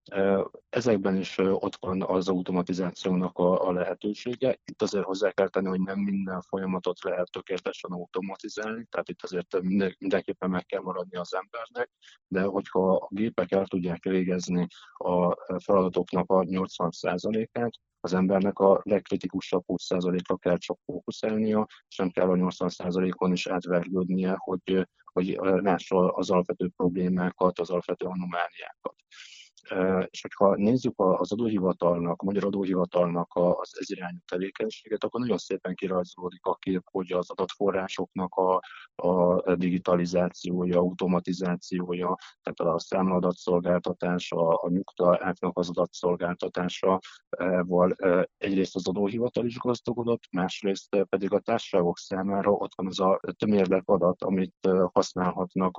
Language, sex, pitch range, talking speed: Hungarian, male, 90-95 Hz, 120 wpm